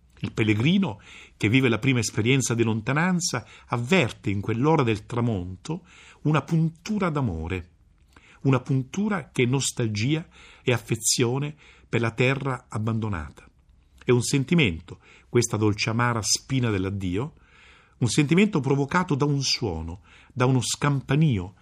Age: 50-69